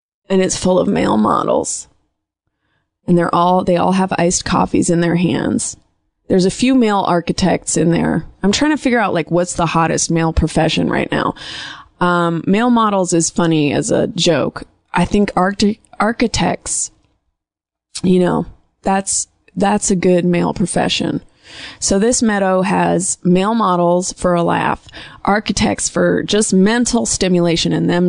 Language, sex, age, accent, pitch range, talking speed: English, female, 20-39, American, 170-215 Hz, 155 wpm